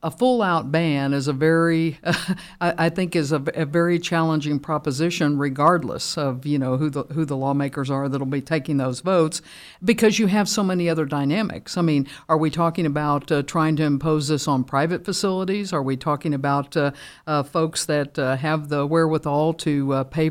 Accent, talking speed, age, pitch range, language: American, 195 wpm, 60-79, 150-175 Hz, English